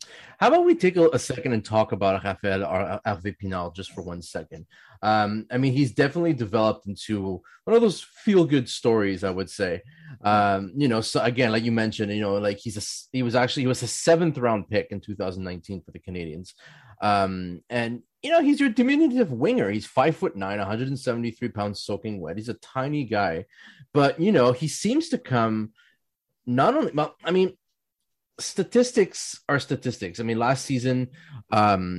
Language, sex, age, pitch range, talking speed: English, male, 30-49, 100-140 Hz, 185 wpm